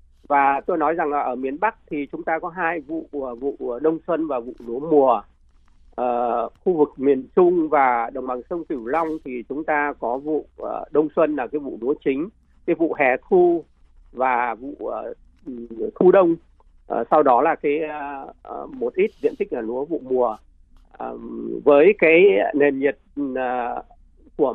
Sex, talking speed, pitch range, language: male, 180 wpm, 130-180 Hz, Vietnamese